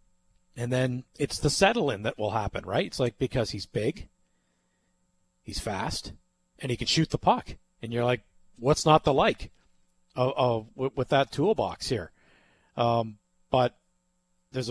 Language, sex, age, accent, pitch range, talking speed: English, male, 40-59, American, 110-135 Hz, 155 wpm